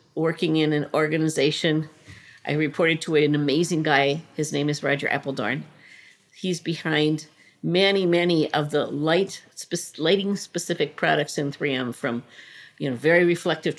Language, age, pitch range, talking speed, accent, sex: English, 50-69, 150-175 Hz, 135 wpm, American, female